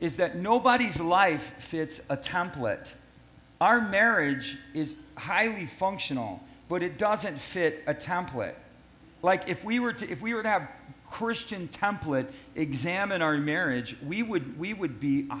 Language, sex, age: English, male, 40-59